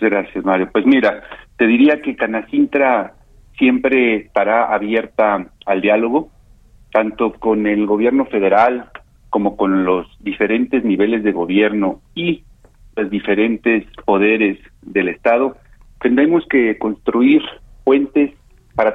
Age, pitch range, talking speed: 40-59, 110-160 Hz, 115 wpm